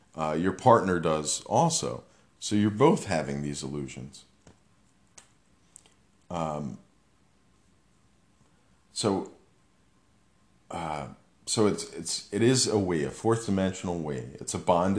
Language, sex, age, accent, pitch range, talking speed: English, male, 40-59, American, 80-105 Hz, 110 wpm